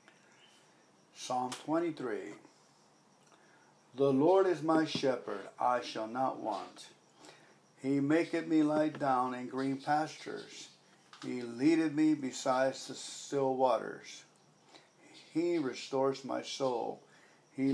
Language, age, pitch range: English, 60-79, 130-160 Hz